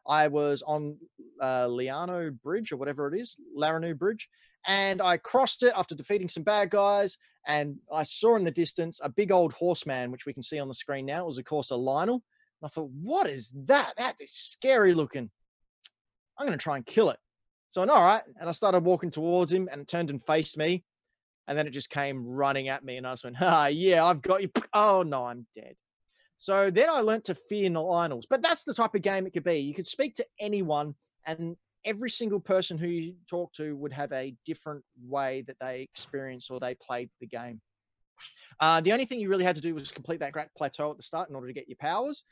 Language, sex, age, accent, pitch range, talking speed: English, male, 20-39, Australian, 140-190 Hz, 235 wpm